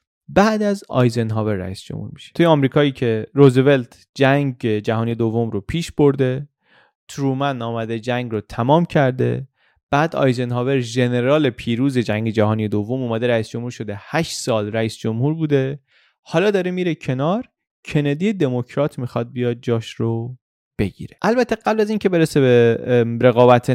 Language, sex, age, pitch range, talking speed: Persian, male, 30-49, 110-140 Hz, 140 wpm